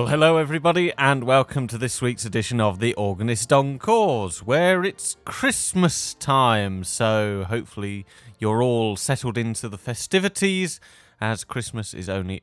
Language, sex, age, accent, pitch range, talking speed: English, male, 30-49, British, 100-135 Hz, 140 wpm